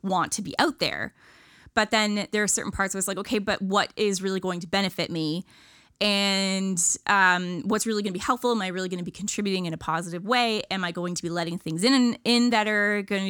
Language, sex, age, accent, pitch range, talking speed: English, female, 20-39, American, 175-220 Hz, 245 wpm